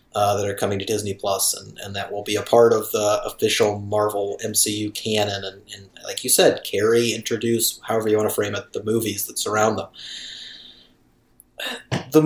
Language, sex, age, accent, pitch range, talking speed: English, male, 30-49, American, 100-115 Hz, 190 wpm